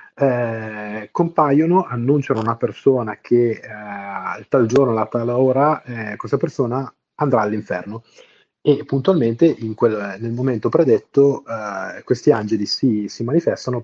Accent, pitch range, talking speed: native, 105-130 Hz, 130 wpm